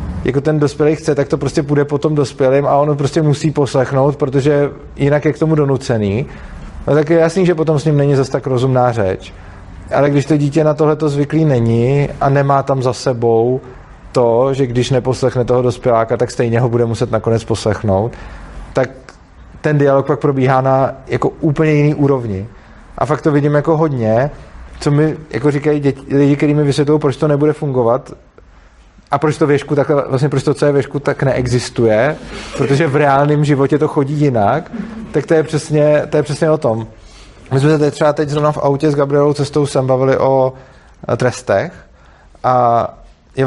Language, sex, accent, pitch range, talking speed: Czech, male, native, 115-150 Hz, 180 wpm